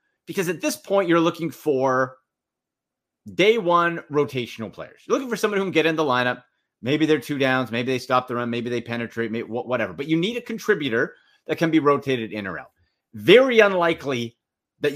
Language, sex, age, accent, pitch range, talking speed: English, male, 40-59, American, 130-220 Hz, 195 wpm